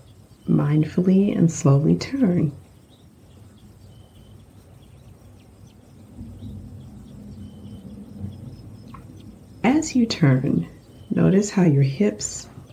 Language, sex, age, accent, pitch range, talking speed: English, female, 40-59, American, 110-150 Hz, 50 wpm